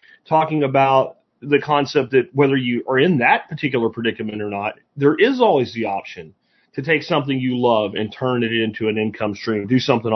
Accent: American